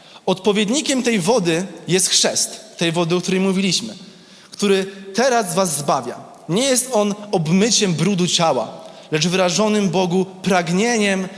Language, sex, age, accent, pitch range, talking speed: Polish, male, 20-39, native, 175-215 Hz, 125 wpm